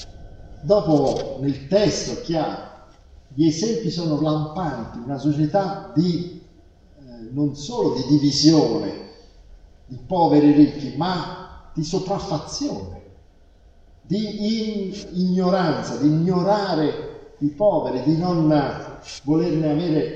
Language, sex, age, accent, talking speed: Italian, male, 50-69, native, 100 wpm